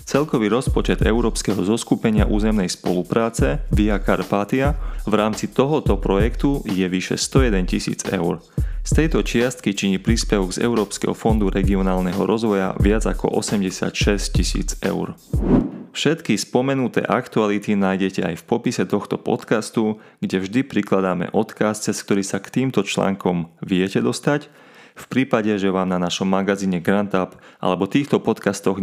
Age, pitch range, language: 30-49, 95-120 Hz, Slovak